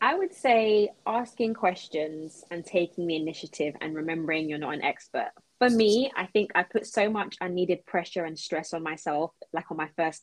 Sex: female